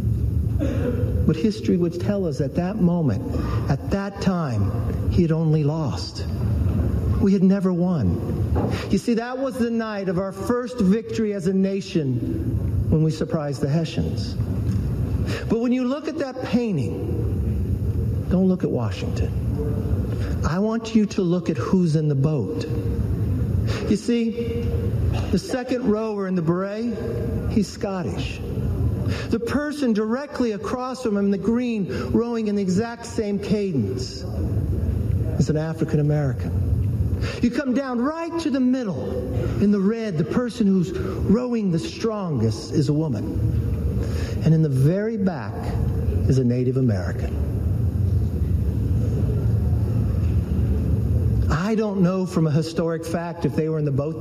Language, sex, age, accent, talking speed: English, male, 60-79, American, 140 wpm